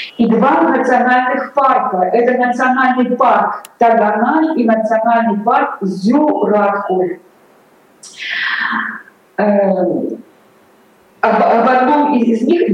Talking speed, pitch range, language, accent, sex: 80 wpm, 220-260 Hz, Russian, native, female